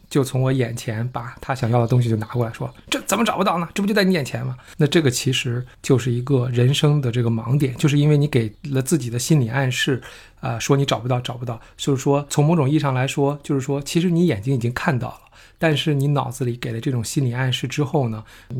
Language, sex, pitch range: Chinese, male, 120-150 Hz